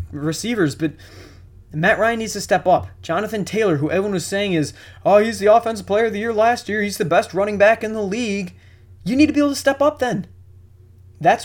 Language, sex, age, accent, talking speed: English, male, 20-39, American, 225 wpm